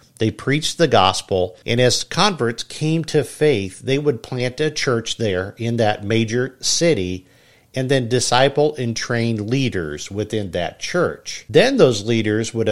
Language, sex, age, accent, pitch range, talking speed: English, male, 50-69, American, 105-135 Hz, 155 wpm